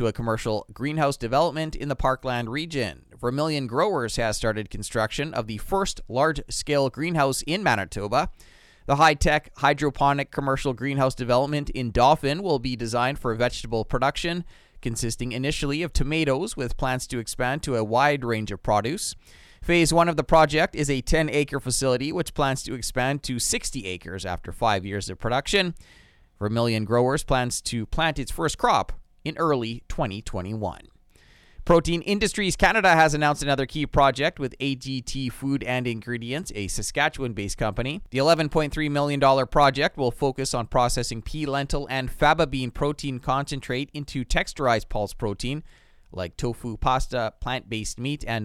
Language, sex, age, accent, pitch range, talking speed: English, male, 30-49, American, 115-150 Hz, 150 wpm